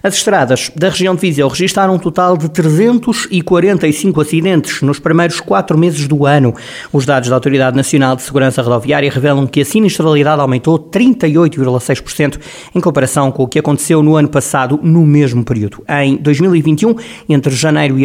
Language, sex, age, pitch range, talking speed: Portuguese, male, 20-39, 130-160 Hz, 165 wpm